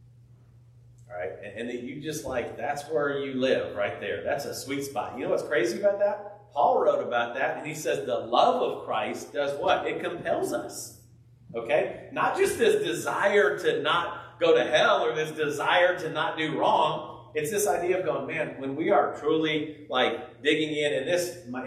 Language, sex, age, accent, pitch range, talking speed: English, male, 40-59, American, 120-155 Hz, 200 wpm